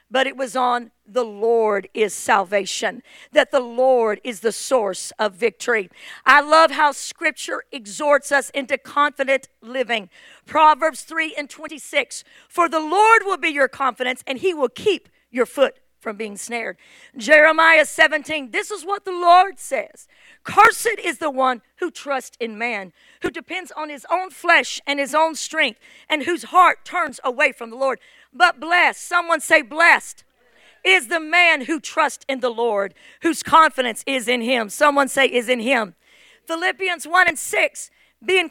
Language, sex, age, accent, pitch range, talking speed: English, female, 50-69, American, 255-325 Hz, 165 wpm